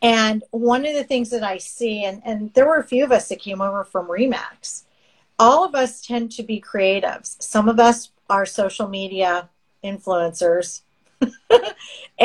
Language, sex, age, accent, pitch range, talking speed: English, female, 40-59, American, 195-245 Hz, 170 wpm